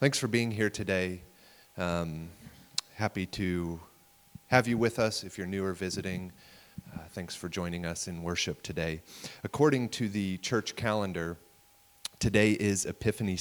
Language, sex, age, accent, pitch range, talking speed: English, male, 30-49, American, 95-125 Hz, 150 wpm